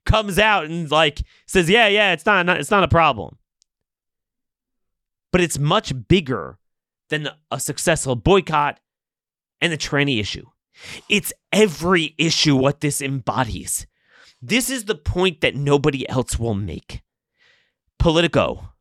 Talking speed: 135 wpm